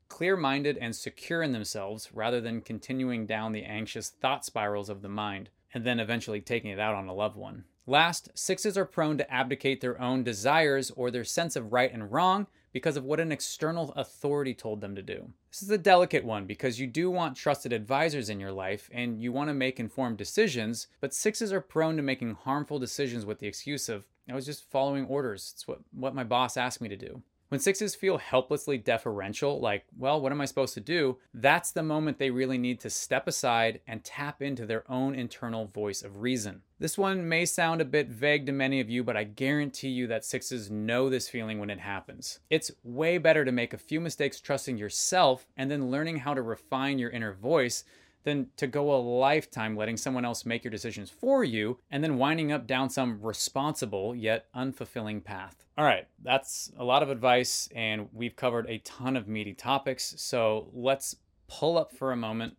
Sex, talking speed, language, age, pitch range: male, 205 wpm, English, 20-39, 110-145 Hz